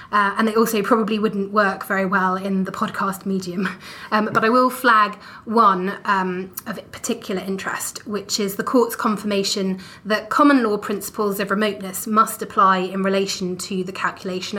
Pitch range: 195-225 Hz